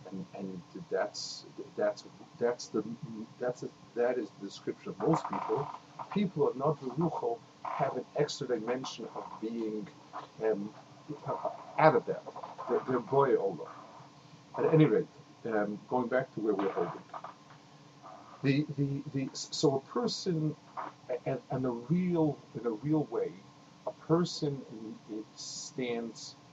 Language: English